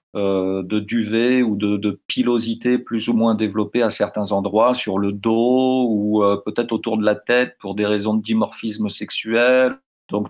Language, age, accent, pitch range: French, 50-69, French, 105-125 Hz